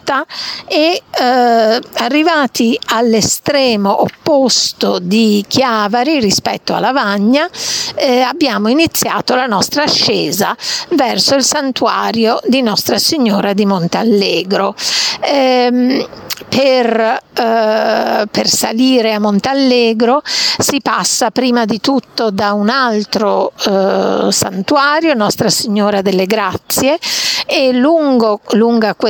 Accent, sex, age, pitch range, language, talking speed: native, female, 50-69, 210-260 Hz, Italian, 95 wpm